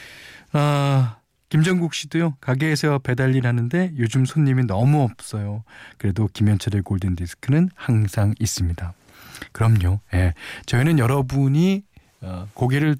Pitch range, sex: 110-150 Hz, male